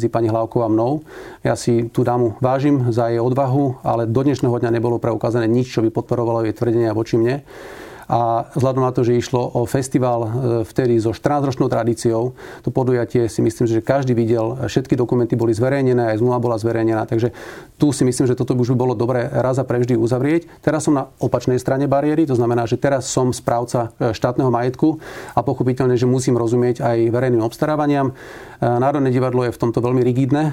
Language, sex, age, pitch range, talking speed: Slovak, male, 40-59, 120-130 Hz, 190 wpm